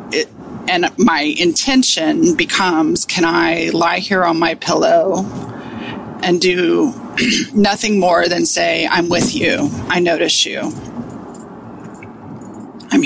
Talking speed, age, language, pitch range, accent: 110 wpm, 30-49, English, 175-255 Hz, American